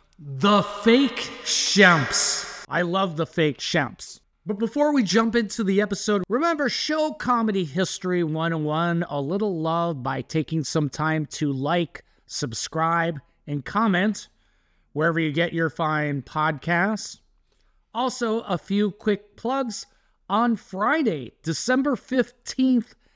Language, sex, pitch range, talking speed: English, male, 165-230 Hz, 120 wpm